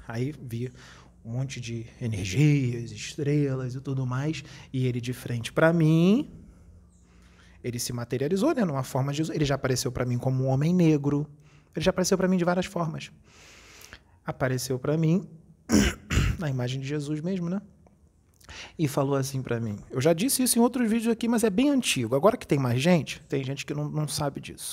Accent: Brazilian